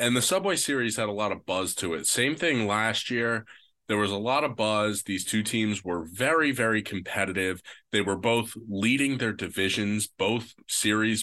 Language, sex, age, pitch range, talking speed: English, male, 20-39, 105-140 Hz, 190 wpm